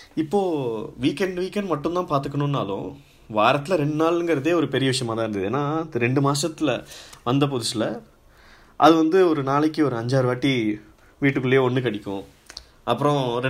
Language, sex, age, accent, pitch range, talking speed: Tamil, male, 20-39, native, 125-155 Hz, 135 wpm